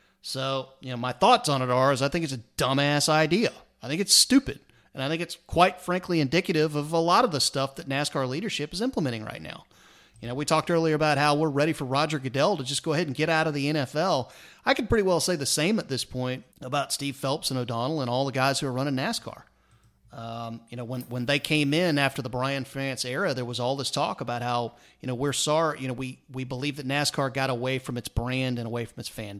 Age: 30-49